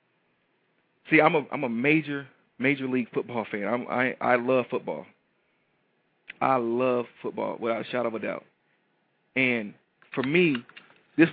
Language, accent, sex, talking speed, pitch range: English, American, male, 150 wpm, 125-155 Hz